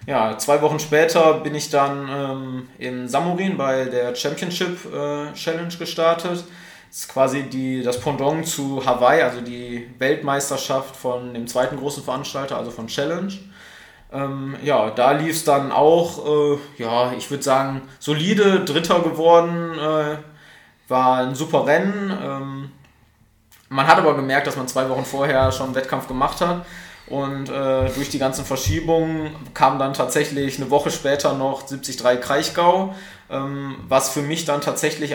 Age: 20-39